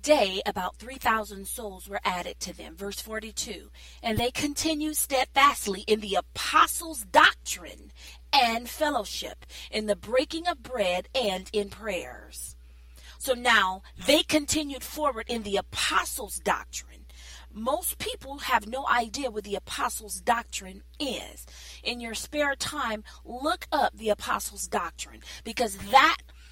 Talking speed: 130 wpm